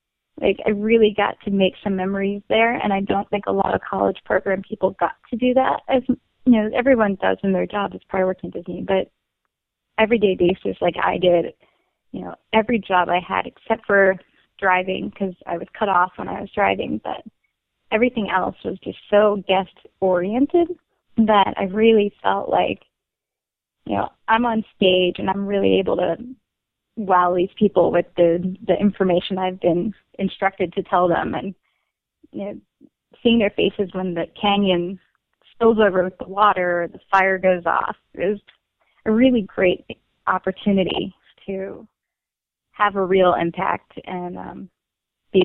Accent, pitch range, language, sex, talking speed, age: American, 185-220 Hz, English, female, 170 wpm, 20-39